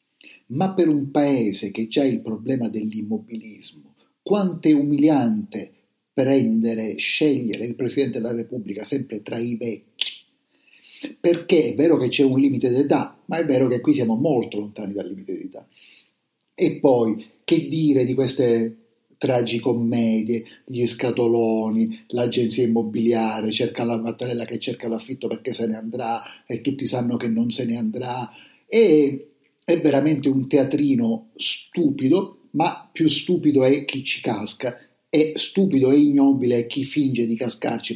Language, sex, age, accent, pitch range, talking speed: Italian, male, 50-69, native, 115-155 Hz, 145 wpm